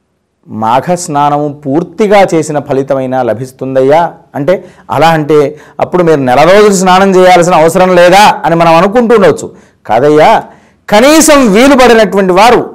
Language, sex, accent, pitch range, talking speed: Telugu, male, native, 135-190 Hz, 110 wpm